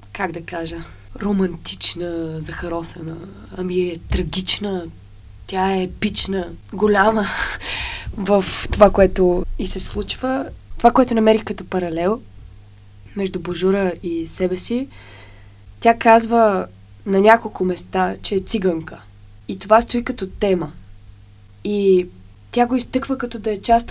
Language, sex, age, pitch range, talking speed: Bulgarian, female, 20-39, 165-215 Hz, 125 wpm